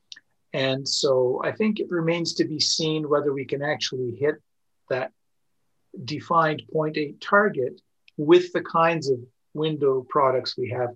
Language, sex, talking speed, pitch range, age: English, male, 140 wpm, 130-160 Hz, 50-69